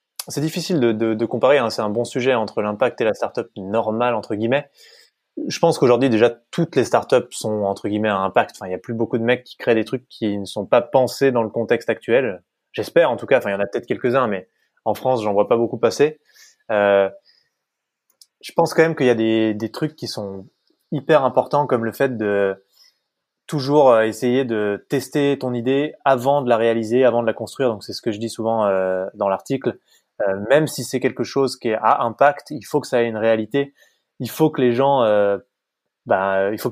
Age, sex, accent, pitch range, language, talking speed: 20-39, male, French, 110-135 Hz, French, 230 wpm